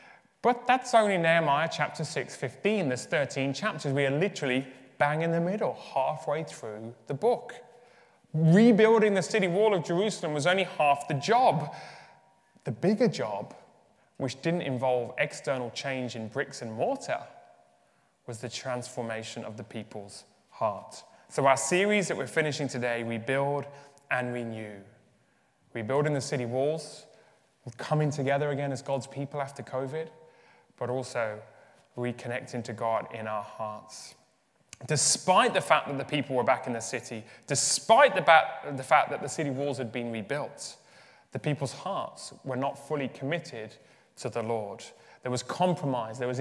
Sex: male